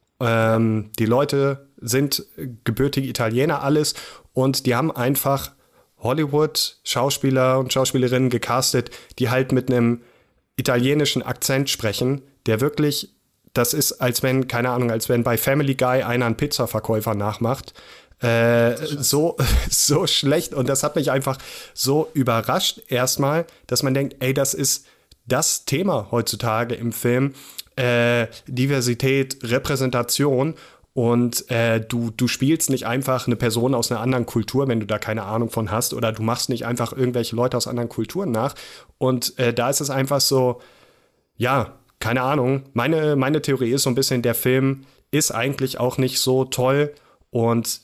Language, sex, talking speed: German, male, 155 wpm